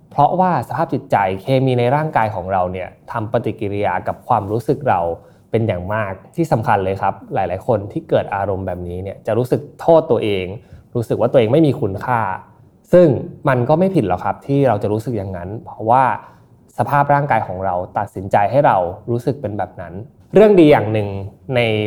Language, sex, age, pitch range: Thai, male, 20-39, 100-135 Hz